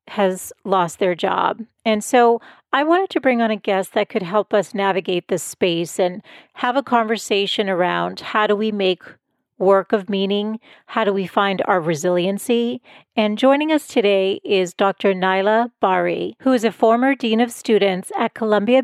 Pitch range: 195-240 Hz